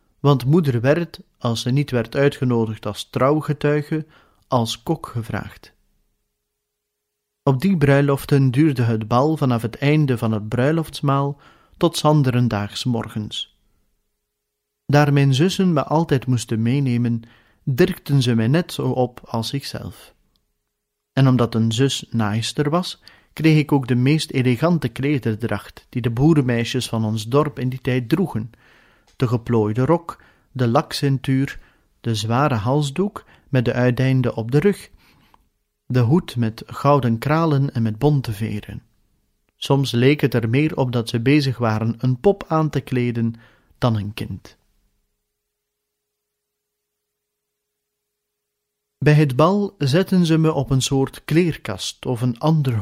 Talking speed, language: 135 wpm, Dutch